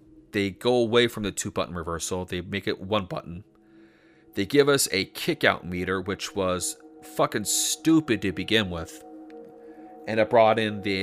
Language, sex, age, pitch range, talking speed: English, male, 30-49, 95-130 Hz, 175 wpm